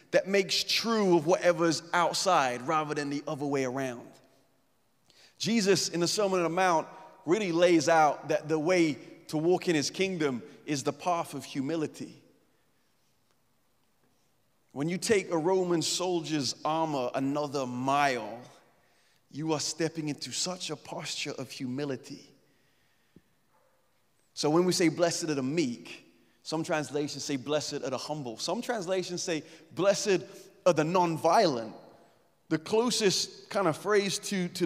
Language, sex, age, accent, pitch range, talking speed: English, male, 30-49, American, 140-180 Hz, 140 wpm